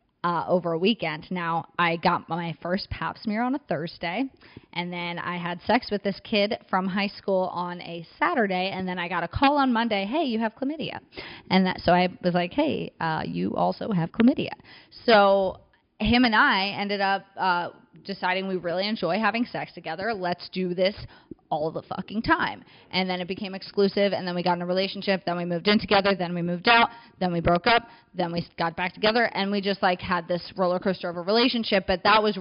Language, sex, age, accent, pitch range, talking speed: English, female, 20-39, American, 175-195 Hz, 215 wpm